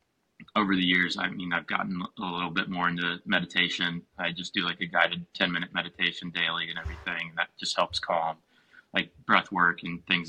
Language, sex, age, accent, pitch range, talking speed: English, male, 30-49, American, 85-95 Hz, 200 wpm